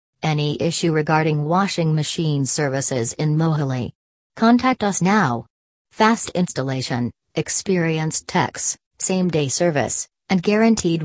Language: English